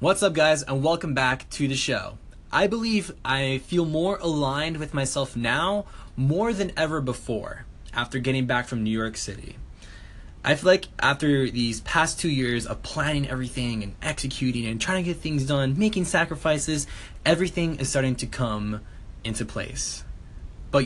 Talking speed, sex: 165 wpm, male